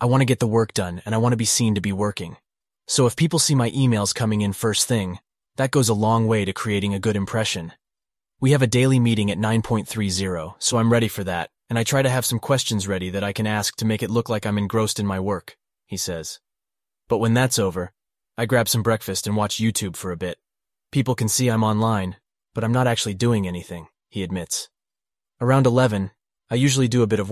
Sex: male